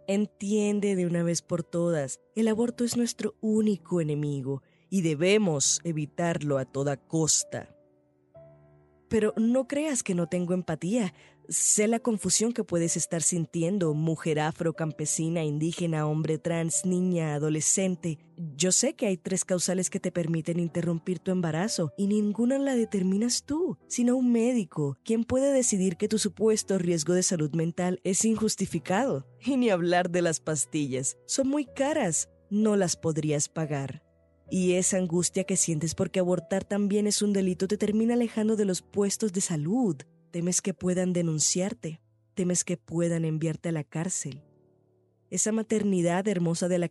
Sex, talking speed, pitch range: female, 155 wpm, 160-200 Hz